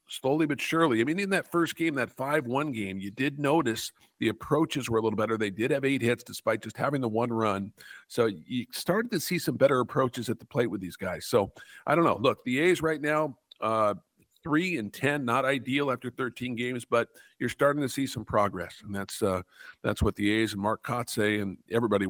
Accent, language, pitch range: American, English, 110-145 Hz